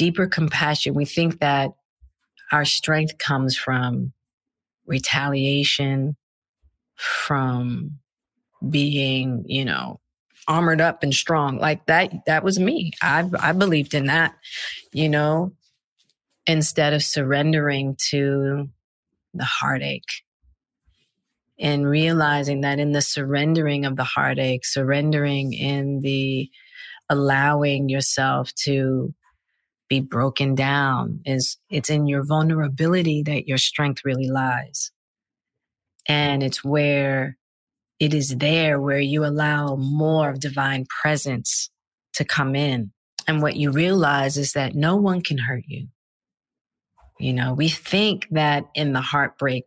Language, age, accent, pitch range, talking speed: English, 40-59, American, 135-155 Hz, 120 wpm